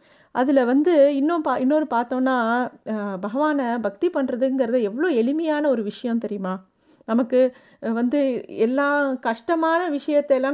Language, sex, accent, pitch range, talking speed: Tamil, female, native, 235-285 Hz, 110 wpm